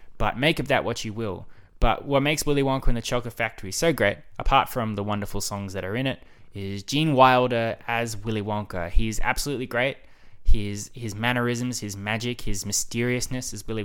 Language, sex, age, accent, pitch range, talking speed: English, male, 20-39, Australian, 100-120 Hz, 195 wpm